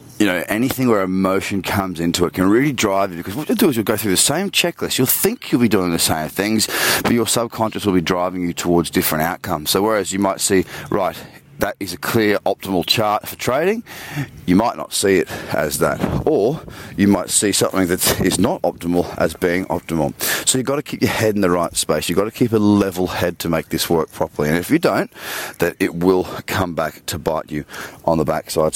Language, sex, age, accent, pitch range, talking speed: English, male, 30-49, Australian, 90-115 Hz, 235 wpm